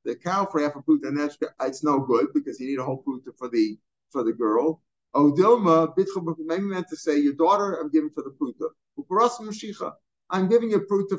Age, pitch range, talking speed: 50-69, 150-195 Hz, 215 wpm